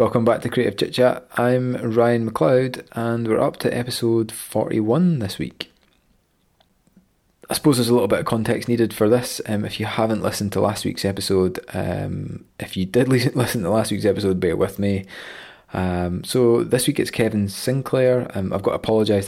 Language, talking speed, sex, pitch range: English, 190 wpm, male, 100-120 Hz